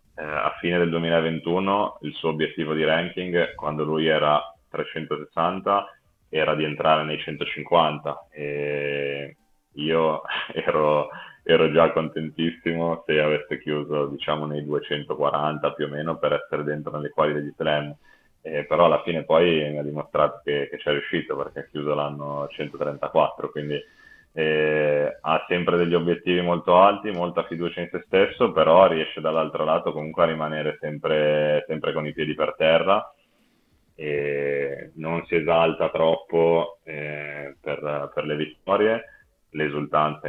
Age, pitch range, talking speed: 20-39, 75-80 Hz, 145 wpm